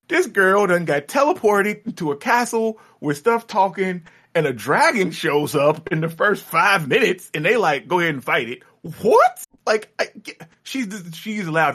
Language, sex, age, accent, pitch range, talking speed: English, male, 30-49, American, 110-180 Hz, 180 wpm